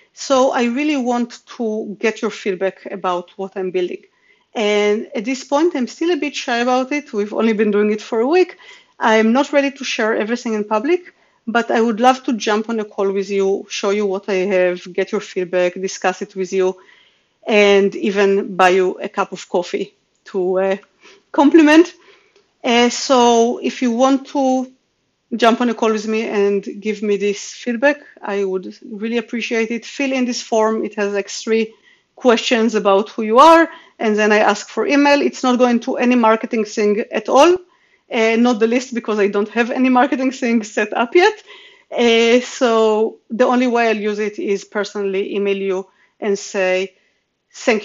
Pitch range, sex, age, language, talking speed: 200-255 Hz, female, 40-59, English, 190 wpm